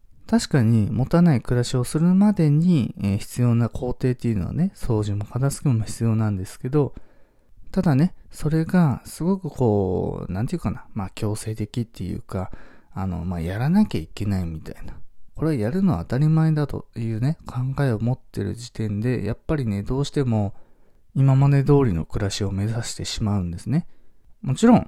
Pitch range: 100-155 Hz